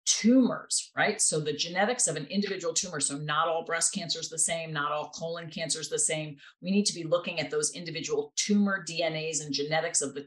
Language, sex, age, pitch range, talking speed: English, female, 40-59, 150-200 Hz, 220 wpm